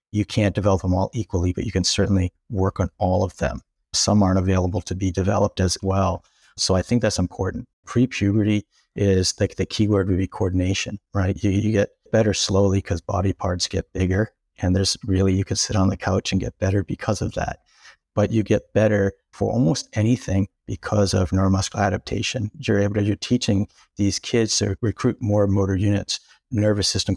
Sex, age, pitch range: male, 50-69, 95-105 Hz